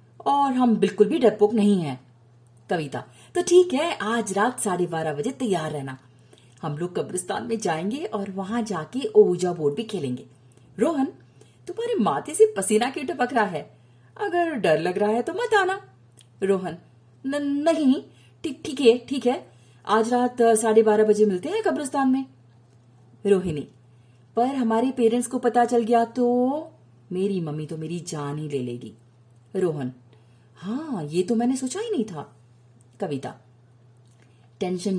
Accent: native